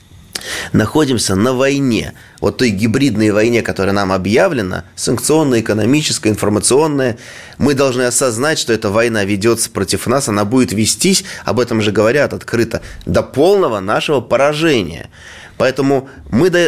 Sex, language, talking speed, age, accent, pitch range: male, Russian, 130 wpm, 30-49, native, 100-135 Hz